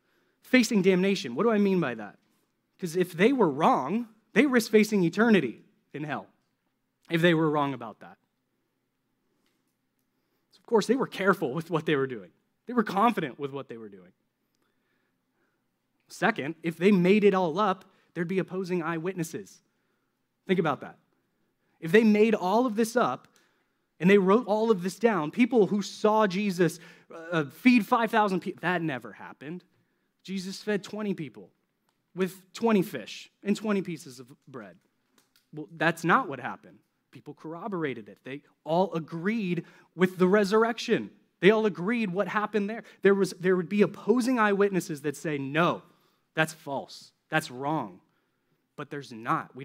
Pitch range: 160-210 Hz